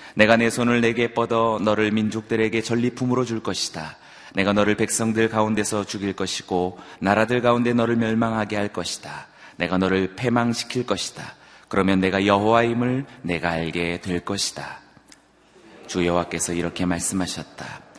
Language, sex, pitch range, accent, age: Korean, male, 90-110 Hz, native, 30-49